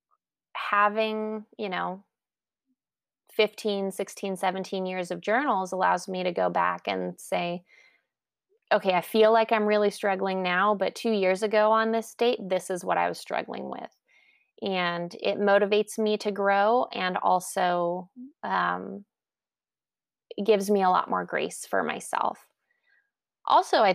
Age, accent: 20-39, American